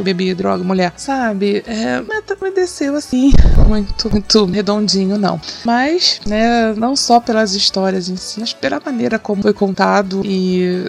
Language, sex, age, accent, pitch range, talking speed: Portuguese, female, 20-39, Brazilian, 190-235 Hz, 155 wpm